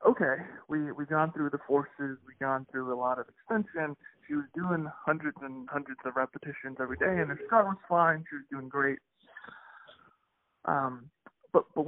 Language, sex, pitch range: English, male, 135-160 Hz